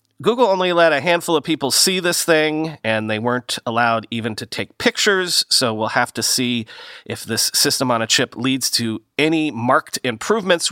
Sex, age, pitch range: male, 30-49, 130-195 Hz